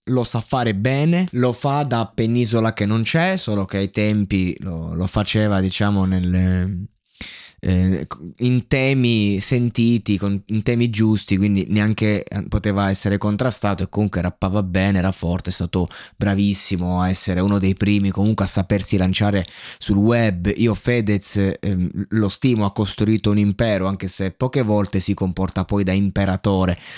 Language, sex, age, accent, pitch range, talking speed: Italian, male, 20-39, native, 95-115 Hz, 155 wpm